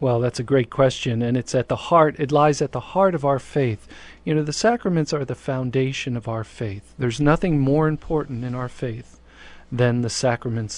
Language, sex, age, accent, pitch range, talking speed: English, male, 40-59, American, 120-145 Hz, 210 wpm